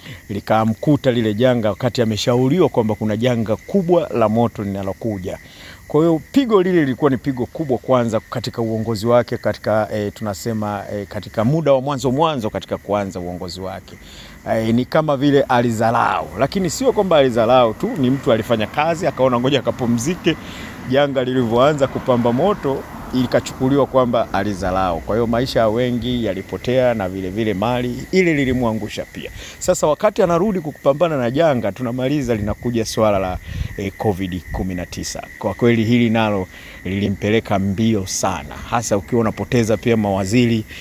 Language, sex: Swahili, male